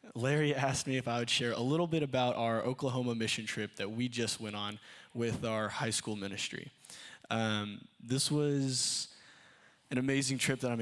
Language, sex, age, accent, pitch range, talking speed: English, male, 20-39, American, 110-130 Hz, 185 wpm